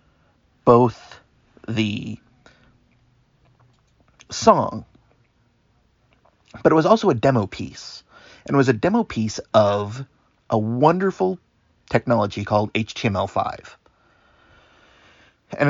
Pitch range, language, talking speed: 110-135 Hz, English, 90 wpm